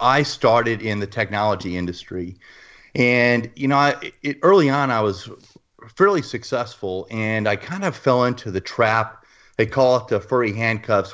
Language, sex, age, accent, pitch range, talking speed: English, male, 30-49, American, 100-130 Hz, 155 wpm